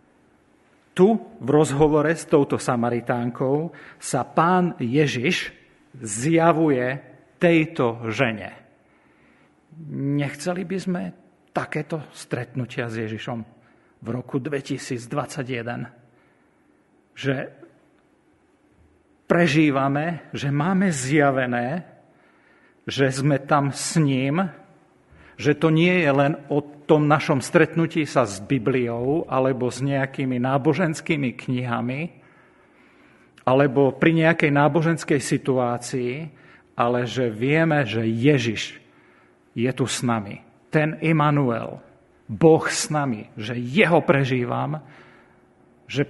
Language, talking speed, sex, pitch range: Slovak, 95 wpm, male, 120-155 Hz